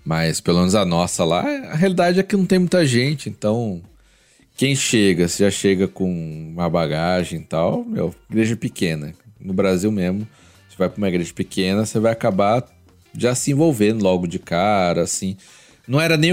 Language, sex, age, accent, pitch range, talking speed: Portuguese, male, 40-59, Brazilian, 95-130 Hz, 190 wpm